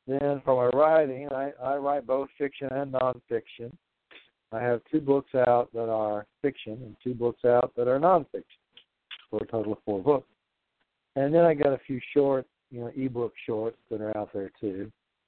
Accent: American